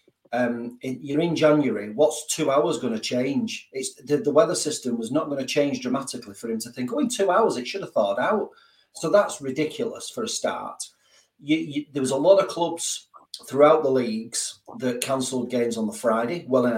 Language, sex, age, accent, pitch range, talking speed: English, male, 40-59, British, 120-150 Hz, 210 wpm